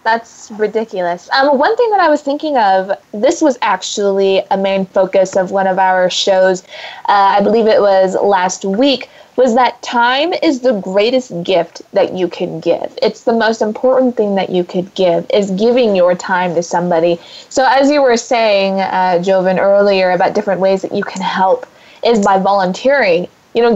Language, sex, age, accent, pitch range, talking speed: English, female, 20-39, American, 185-235 Hz, 185 wpm